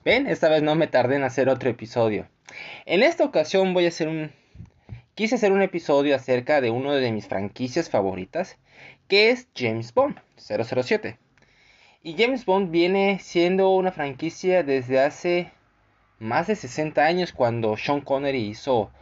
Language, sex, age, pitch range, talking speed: Spanish, male, 20-39, 115-170 Hz, 160 wpm